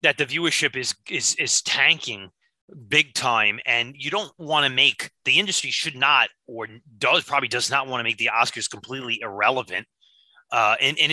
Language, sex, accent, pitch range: English, male, American, 120-145 Hz